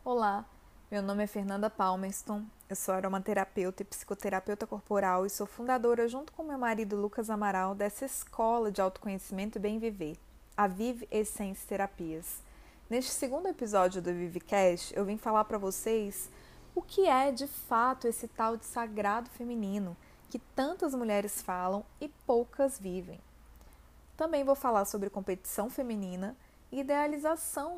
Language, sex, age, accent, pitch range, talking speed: Portuguese, female, 20-39, Brazilian, 195-260 Hz, 145 wpm